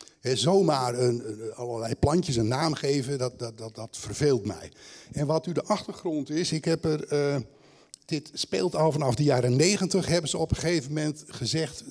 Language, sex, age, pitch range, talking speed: Dutch, male, 60-79, 130-160 Hz, 185 wpm